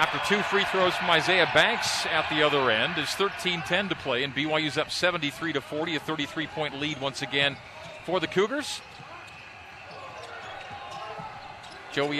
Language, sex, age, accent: English, male, 40-59, American